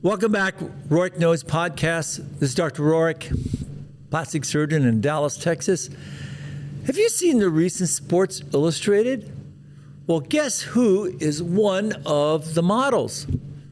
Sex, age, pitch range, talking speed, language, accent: male, 60-79, 140-170 Hz, 125 wpm, English, American